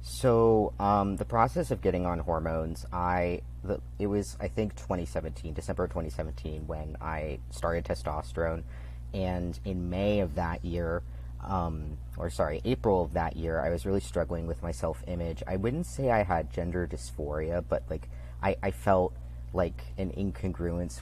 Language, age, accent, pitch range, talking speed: English, 30-49, American, 75-90 Hz, 160 wpm